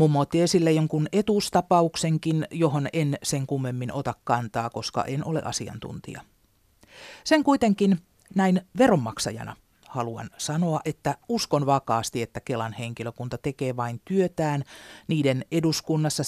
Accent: native